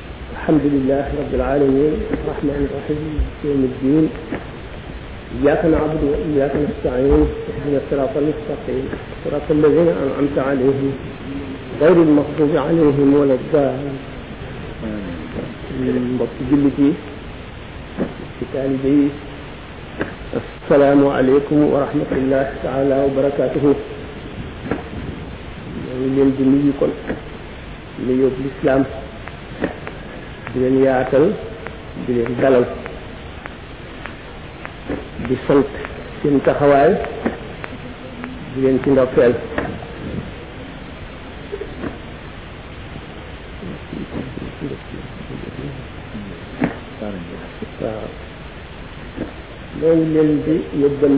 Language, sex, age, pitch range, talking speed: French, male, 50-69, 135-150 Hz, 50 wpm